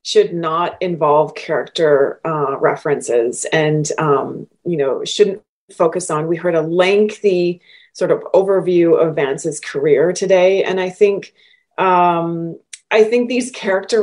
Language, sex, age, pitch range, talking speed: English, female, 30-49, 165-215 Hz, 135 wpm